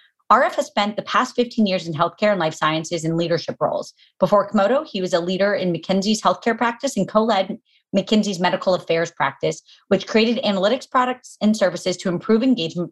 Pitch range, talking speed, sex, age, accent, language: 175-225 Hz, 190 wpm, female, 30-49, American, English